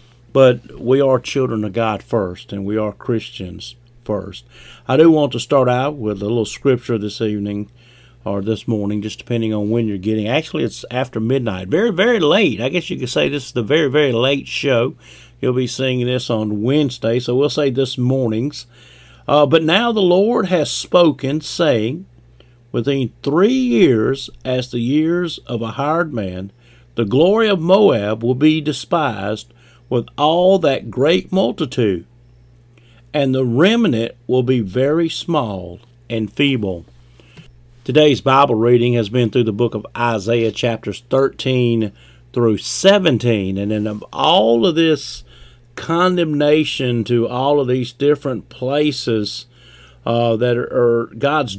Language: English